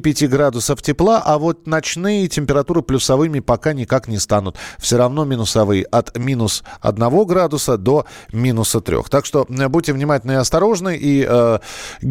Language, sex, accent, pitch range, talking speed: Russian, male, native, 110-150 Hz, 150 wpm